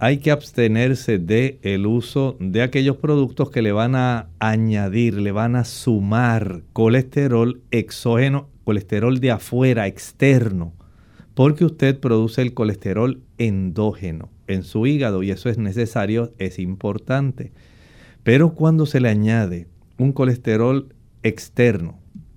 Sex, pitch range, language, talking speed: male, 110-135 Hz, Spanish, 125 wpm